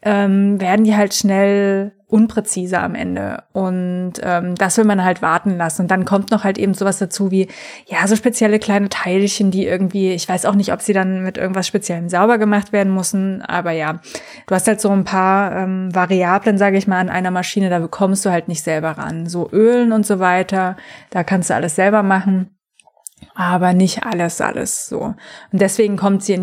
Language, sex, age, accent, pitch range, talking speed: German, female, 20-39, German, 180-210 Hz, 200 wpm